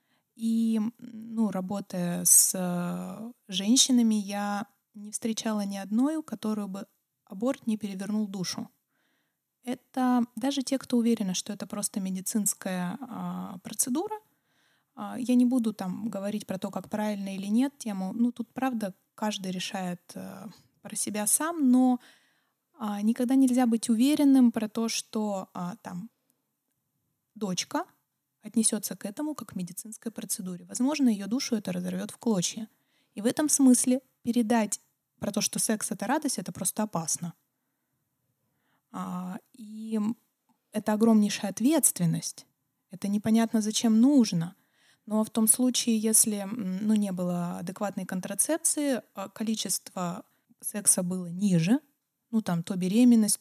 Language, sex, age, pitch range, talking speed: Russian, female, 20-39, 195-235 Hz, 130 wpm